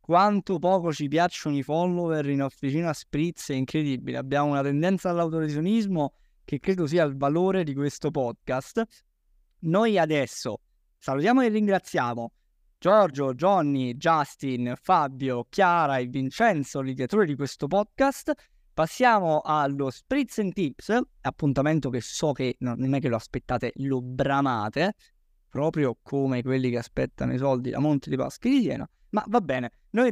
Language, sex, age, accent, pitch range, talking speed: Italian, male, 20-39, native, 130-185 Hz, 145 wpm